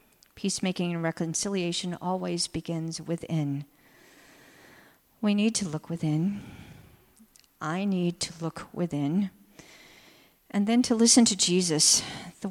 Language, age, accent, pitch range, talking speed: English, 50-69, American, 175-220 Hz, 110 wpm